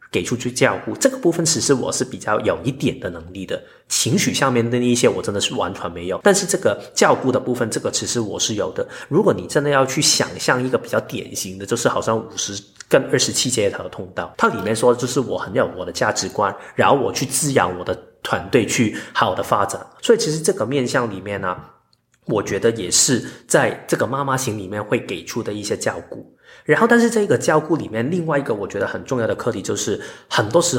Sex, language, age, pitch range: male, Chinese, 30-49, 110-155 Hz